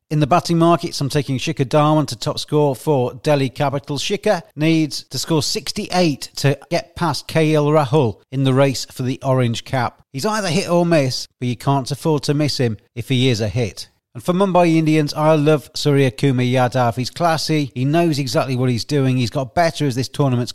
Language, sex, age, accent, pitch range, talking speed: English, male, 40-59, British, 125-155 Hz, 205 wpm